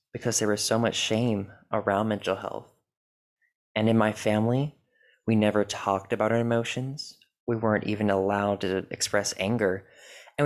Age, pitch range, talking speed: 20-39, 100-115 Hz, 155 wpm